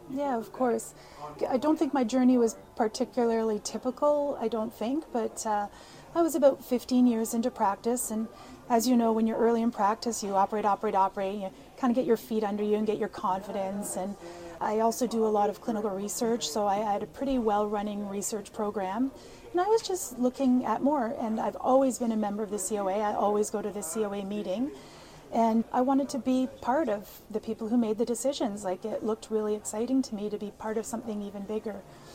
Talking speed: 215 wpm